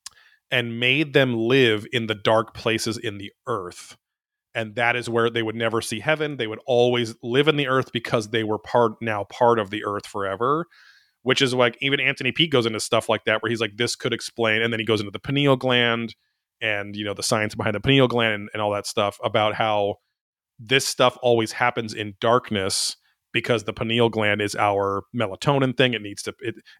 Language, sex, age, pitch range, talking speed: English, male, 30-49, 105-125 Hz, 215 wpm